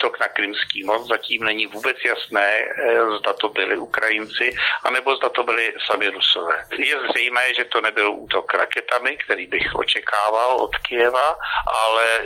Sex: male